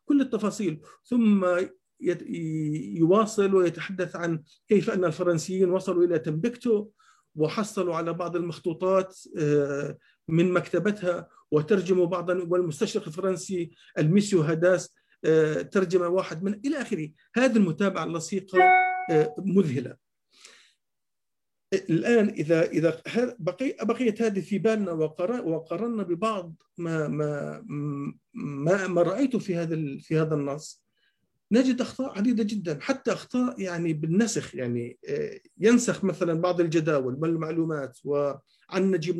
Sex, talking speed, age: male, 105 wpm, 50-69